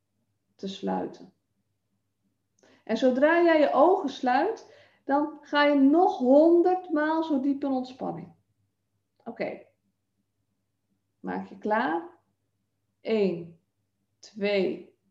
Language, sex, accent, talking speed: Dutch, female, Dutch, 100 wpm